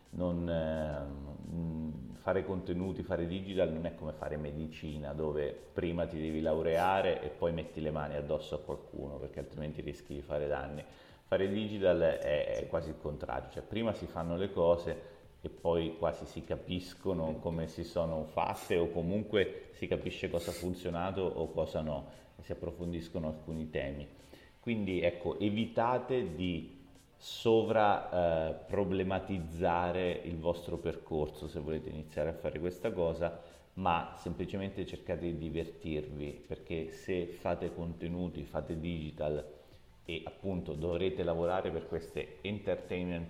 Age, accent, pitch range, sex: 30-49, native, 80-90 Hz, male